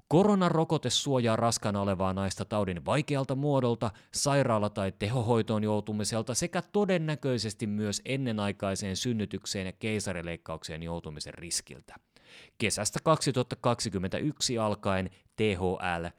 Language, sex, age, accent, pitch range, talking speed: Finnish, male, 30-49, native, 100-130 Hz, 95 wpm